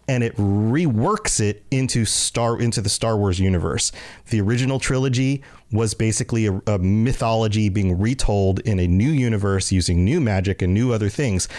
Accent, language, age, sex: American, English, 30-49, male